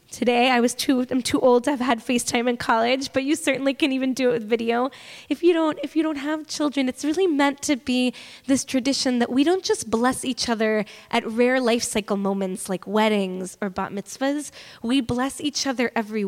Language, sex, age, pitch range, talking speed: English, female, 10-29, 220-295 Hz, 215 wpm